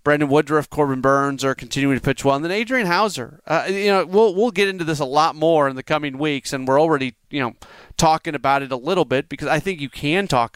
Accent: American